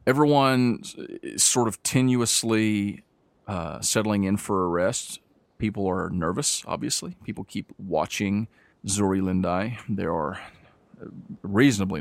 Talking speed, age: 115 wpm, 40-59